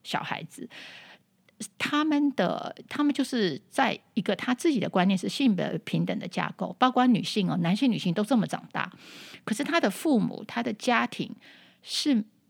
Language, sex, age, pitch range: Chinese, female, 50-69, 195-260 Hz